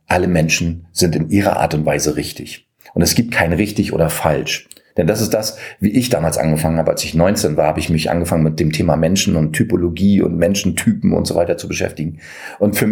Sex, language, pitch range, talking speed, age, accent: male, German, 80-110 Hz, 225 wpm, 40-59, German